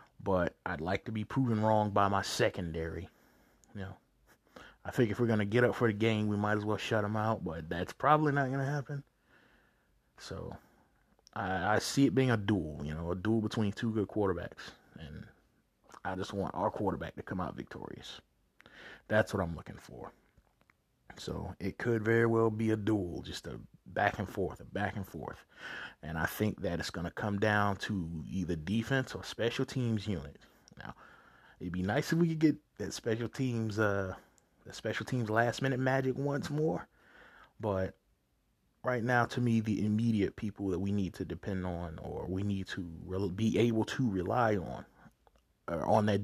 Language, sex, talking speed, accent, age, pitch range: English, male, 190 wpm, American, 30-49, 95-115 Hz